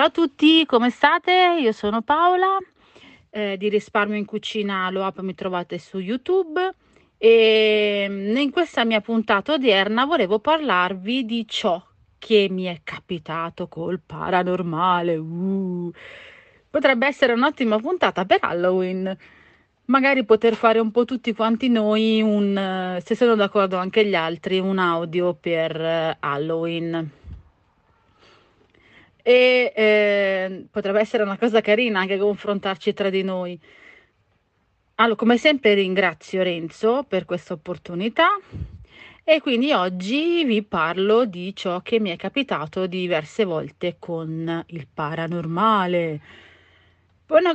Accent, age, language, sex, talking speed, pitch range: native, 30-49, Italian, female, 120 wpm, 175-230 Hz